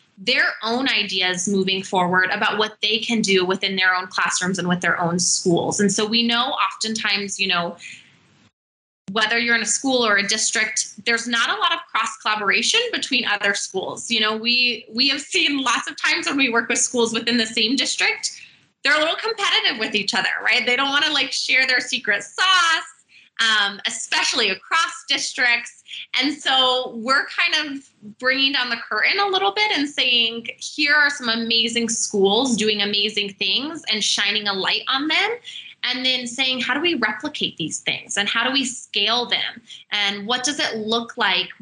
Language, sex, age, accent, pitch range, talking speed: English, female, 20-39, American, 205-260 Hz, 190 wpm